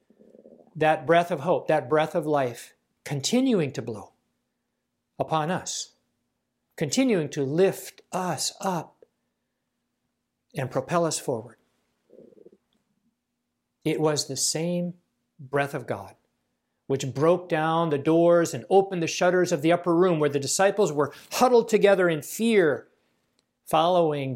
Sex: male